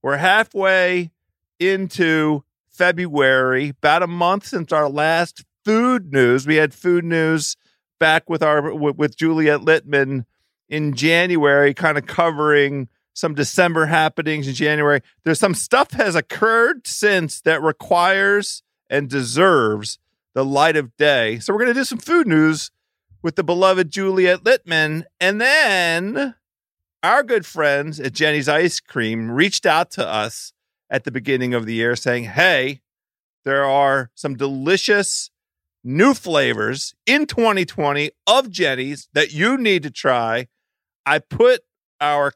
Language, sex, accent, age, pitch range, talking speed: English, male, American, 40-59, 140-180 Hz, 140 wpm